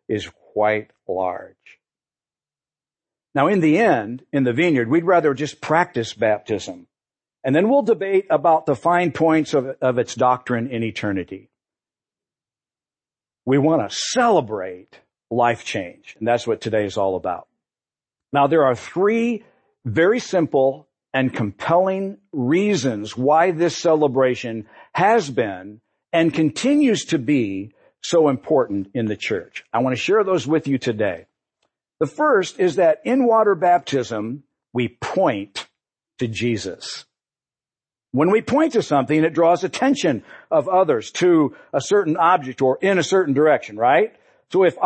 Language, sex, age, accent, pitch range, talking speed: English, male, 50-69, American, 120-185 Hz, 140 wpm